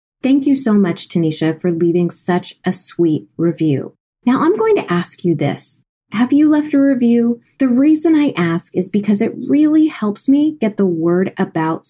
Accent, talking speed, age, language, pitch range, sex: American, 185 wpm, 30-49, English, 170-230 Hz, female